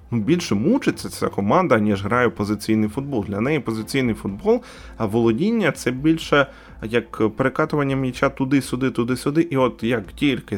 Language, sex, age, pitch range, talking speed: Ukrainian, male, 20-39, 105-145 Hz, 155 wpm